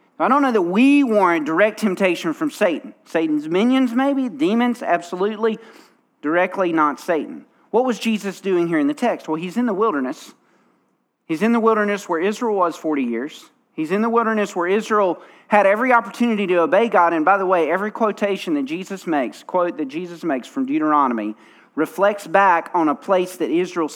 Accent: American